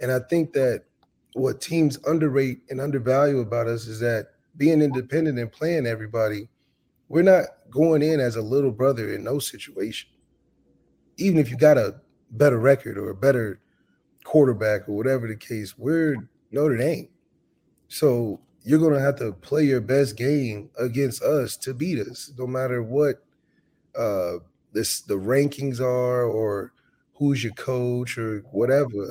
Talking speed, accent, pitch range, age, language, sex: 155 wpm, American, 110-140 Hz, 30-49, English, male